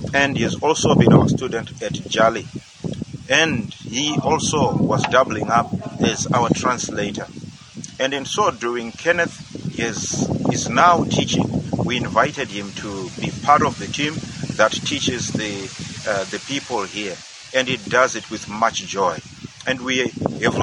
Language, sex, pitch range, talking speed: English, male, 115-140 Hz, 155 wpm